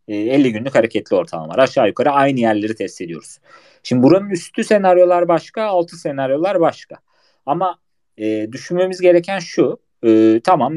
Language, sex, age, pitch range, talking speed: Turkish, male, 30-49, 120-170 Hz, 140 wpm